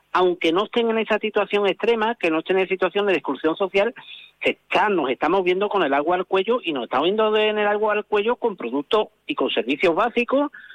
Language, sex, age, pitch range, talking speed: Spanish, male, 50-69, 175-220 Hz, 225 wpm